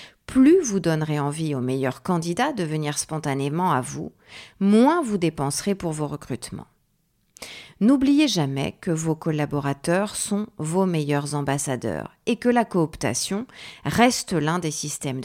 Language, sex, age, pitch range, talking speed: French, female, 40-59, 150-215 Hz, 140 wpm